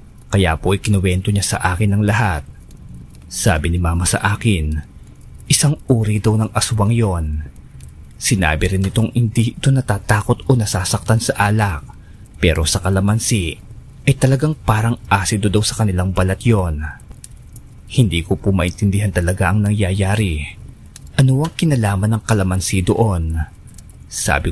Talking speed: 135 wpm